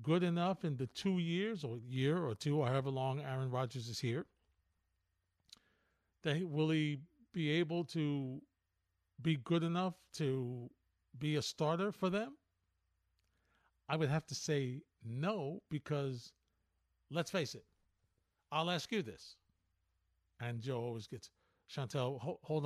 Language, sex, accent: English, male, American